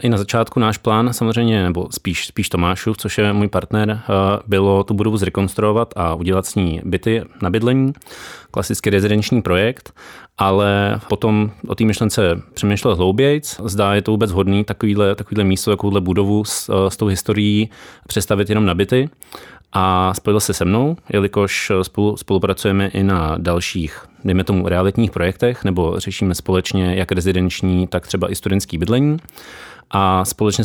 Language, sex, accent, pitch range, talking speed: Czech, male, native, 95-105 Hz, 155 wpm